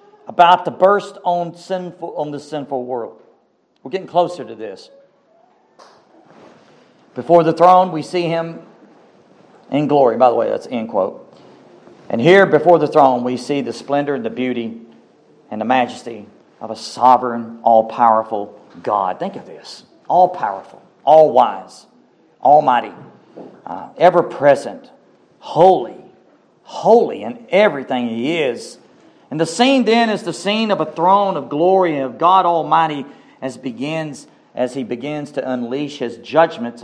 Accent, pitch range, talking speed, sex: American, 135-190 Hz, 140 wpm, male